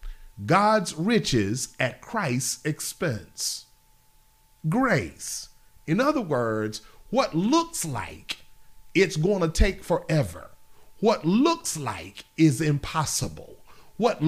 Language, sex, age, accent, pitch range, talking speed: English, male, 40-59, American, 130-210 Hz, 95 wpm